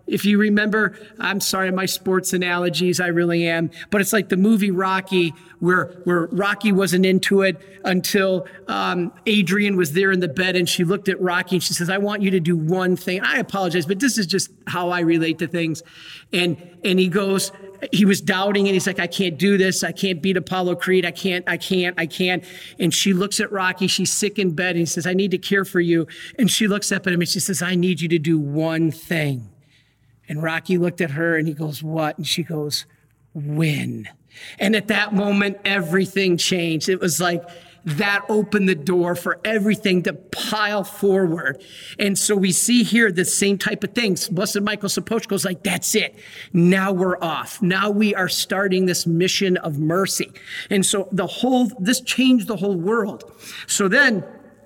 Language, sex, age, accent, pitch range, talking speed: English, male, 40-59, American, 175-200 Hz, 205 wpm